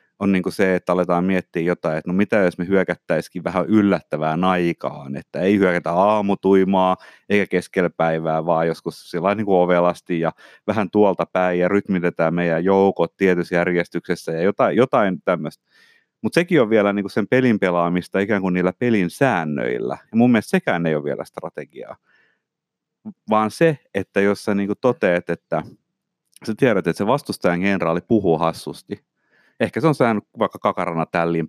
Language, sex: Finnish, male